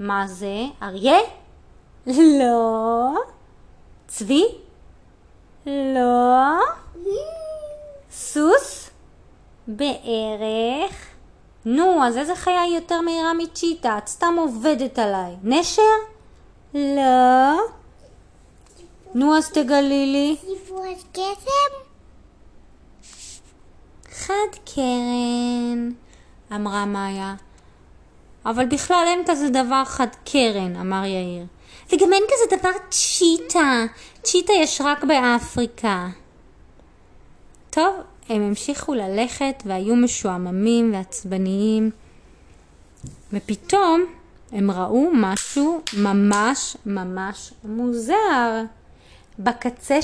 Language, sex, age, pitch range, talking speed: Hebrew, female, 20-39, 205-320 Hz, 75 wpm